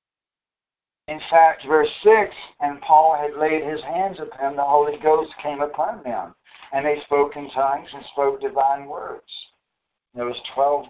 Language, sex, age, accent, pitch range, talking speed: English, male, 60-79, American, 130-155 Hz, 165 wpm